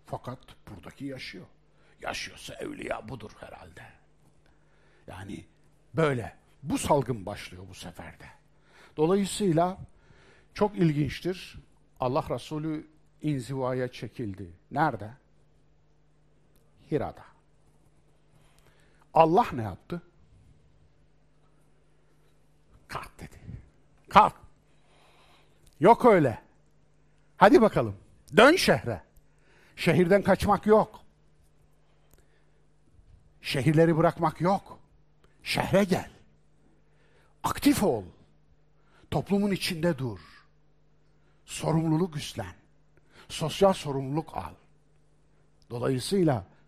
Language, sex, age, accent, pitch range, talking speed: Turkish, male, 60-79, native, 120-180 Hz, 70 wpm